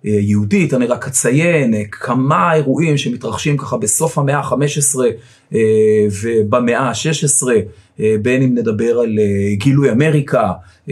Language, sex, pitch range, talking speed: Hebrew, male, 115-150 Hz, 105 wpm